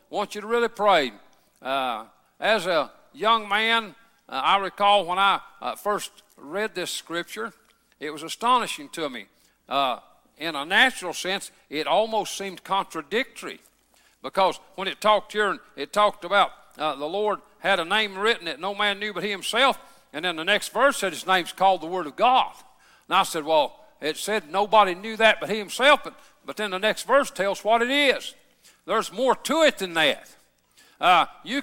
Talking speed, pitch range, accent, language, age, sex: 190 wpm, 190-230 Hz, American, English, 60-79, male